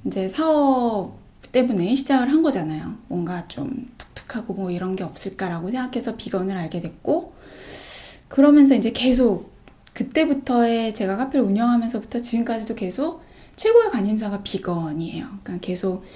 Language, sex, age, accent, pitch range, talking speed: English, female, 20-39, Korean, 200-275 Hz, 115 wpm